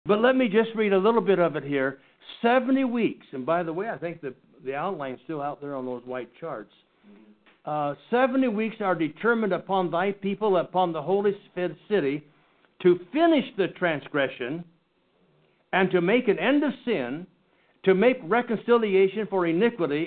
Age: 60-79